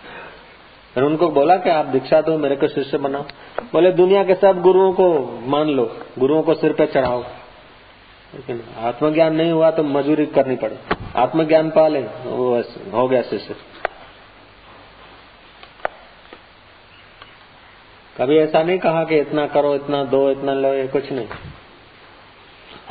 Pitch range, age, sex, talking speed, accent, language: 125-150 Hz, 40-59, male, 140 wpm, native, Hindi